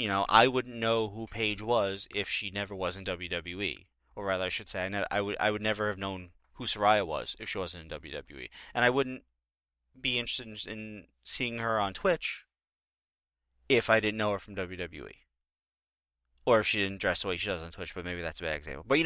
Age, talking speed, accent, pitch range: 30-49, 225 wpm, American, 70-110 Hz